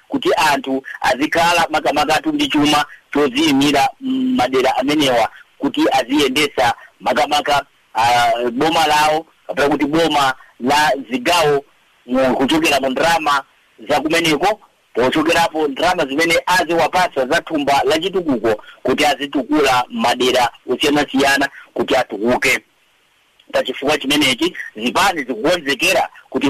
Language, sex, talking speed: English, male, 105 wpm